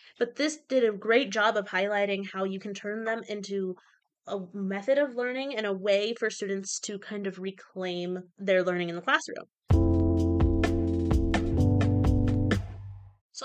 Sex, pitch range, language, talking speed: female, 195-240 Hz, English, 145 wpm